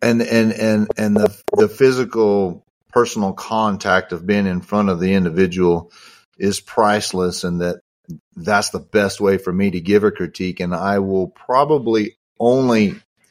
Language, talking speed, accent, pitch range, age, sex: English, 160 wpm, American, 90-110 Hz, 40-59, male